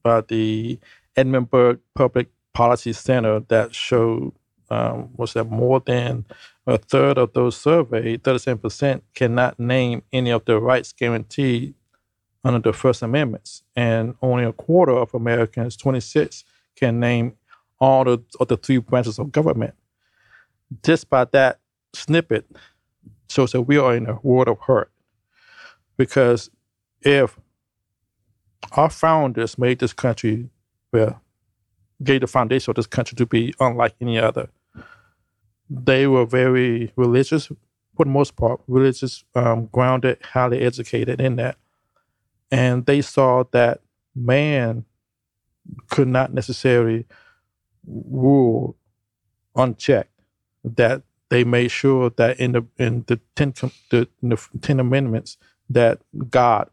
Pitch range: 115-130 Hz